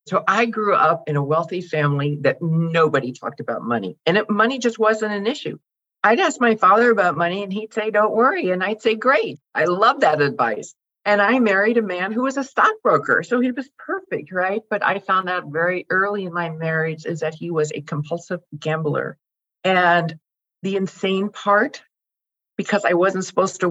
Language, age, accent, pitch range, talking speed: English, 50-69, American, 150-210 Hz, 195 wpm